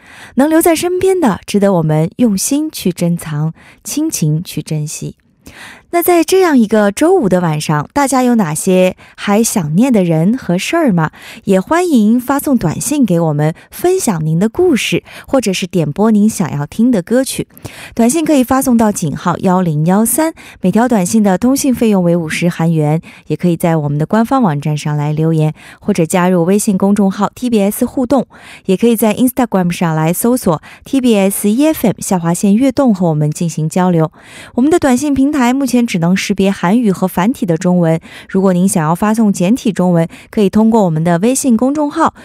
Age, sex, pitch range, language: 20-39, female, 175-245 Hz, Korean